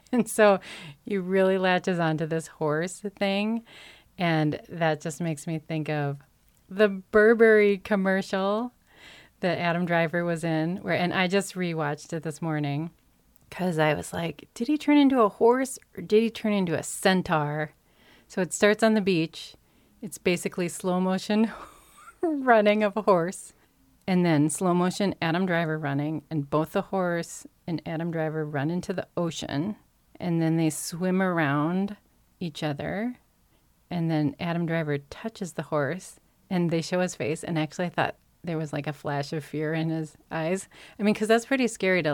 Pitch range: 155-195 Hz